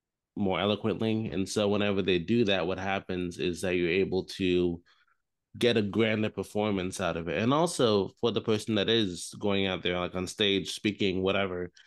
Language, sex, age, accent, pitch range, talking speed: English, male, 20-39, American, 95-120 Hz, 185 wpm